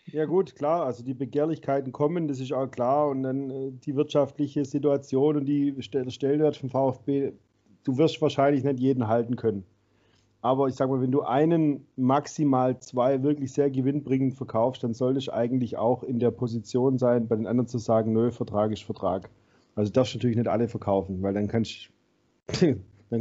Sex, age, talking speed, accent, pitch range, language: male, 30-49, 180 wpm, German, 120-145 Hz, German